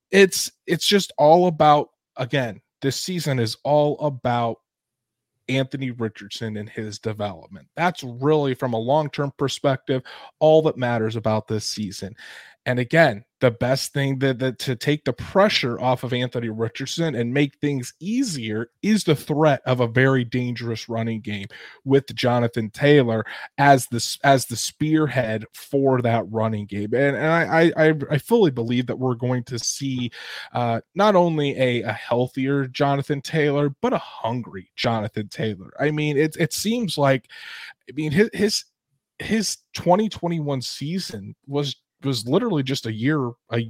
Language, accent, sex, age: English, American, male, 30-49